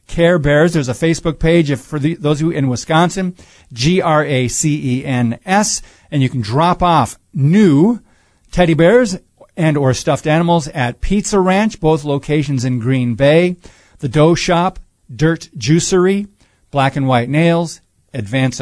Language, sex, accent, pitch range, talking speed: English, male, American, 125-165 Hz, 140 wpm